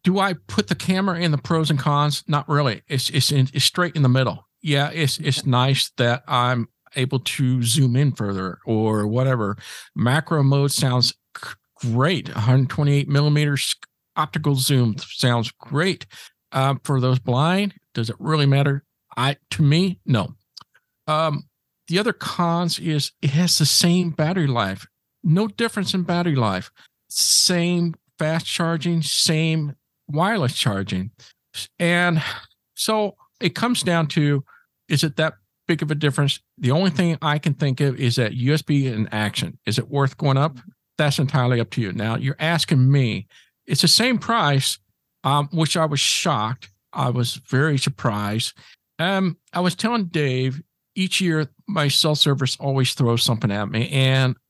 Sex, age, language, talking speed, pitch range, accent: male, 50-69, English, 160 wpm, 125-165 Hz, American